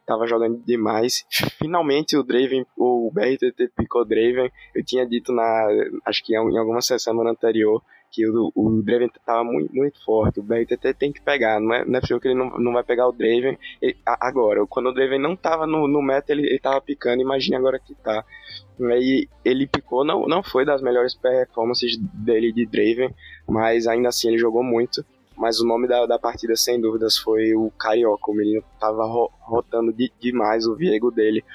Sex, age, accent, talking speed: male, 20-39, Brazilian, 195 wpm